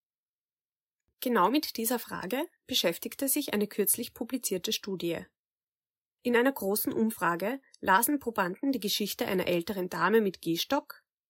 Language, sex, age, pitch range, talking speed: German, female, 20-39, 185-270 Hz, 120 wpm